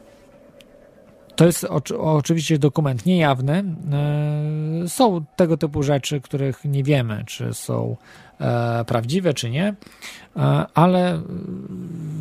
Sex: male